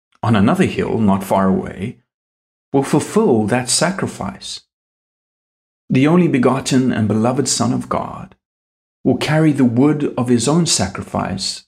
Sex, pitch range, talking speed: male, 105-140 Hz, 135 wpm